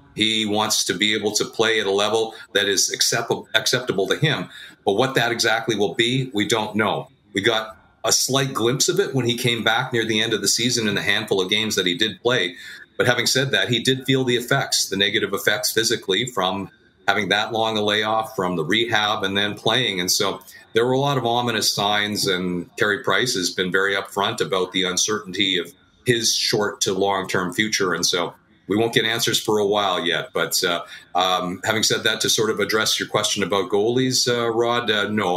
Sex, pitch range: male, 100-120 Hz